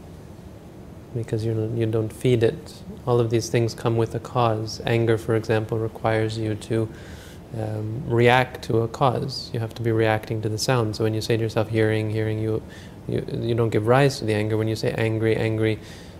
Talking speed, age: 200 wpm, 30-49